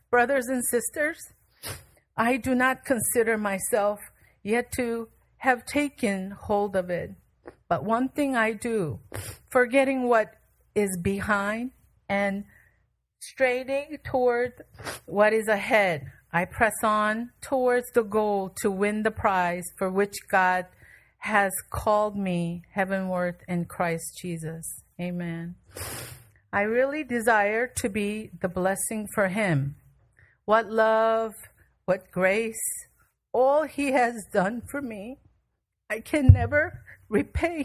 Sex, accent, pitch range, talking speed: female, American, 195-245 Hz, 120 wpm